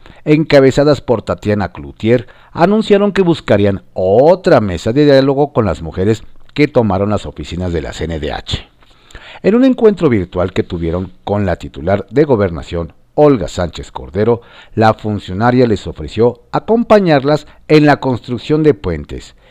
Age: 50-69